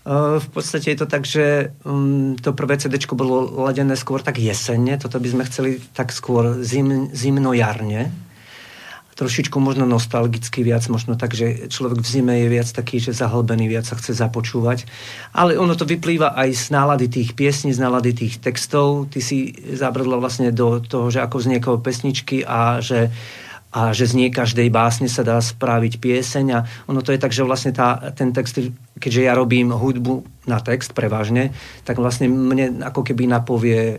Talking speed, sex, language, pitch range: 180 wpm, male, Slovak, 115-130 Hz